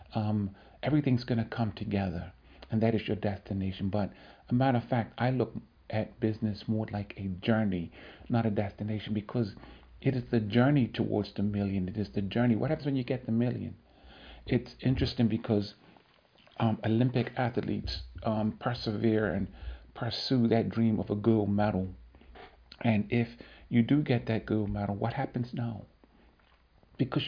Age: 50-69